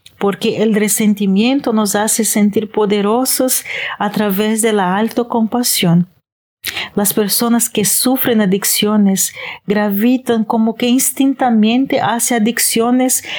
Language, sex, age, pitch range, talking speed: Spanish, female, 40-59, 205-240 Hz, 110 wpm